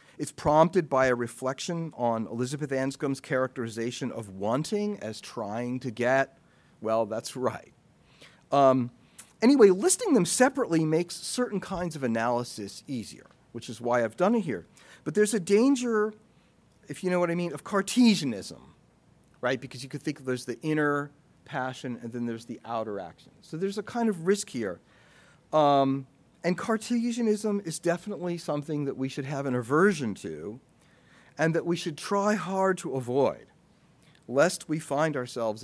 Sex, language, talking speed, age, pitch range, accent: male, English, 160 wpm, 40-59, 125-195 Hz, American